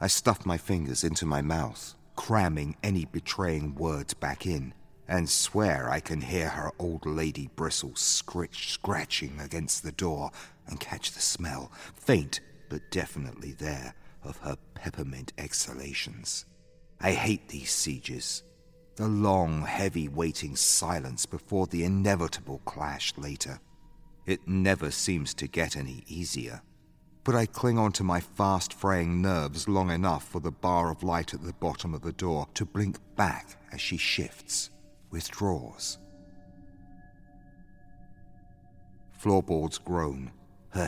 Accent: British